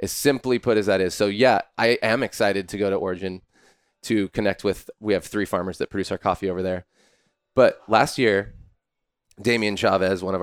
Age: 20-39